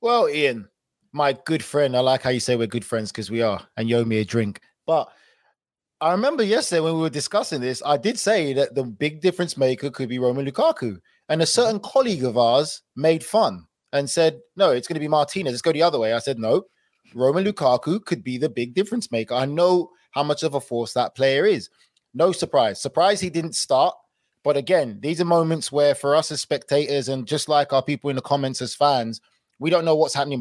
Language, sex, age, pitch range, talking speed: English, male, 20-39, 125-160 Hz, 230 wpm